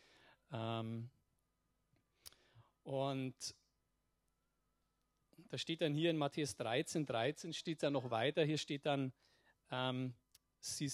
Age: 40-59